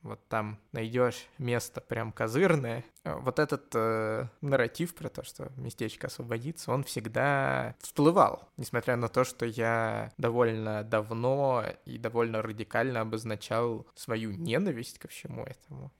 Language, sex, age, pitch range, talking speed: Russian, male, 20-39, 105-125 Hz, 130 wpm